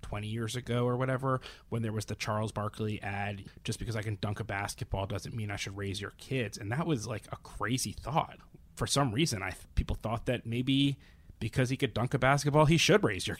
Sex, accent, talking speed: male, American, 230 wpm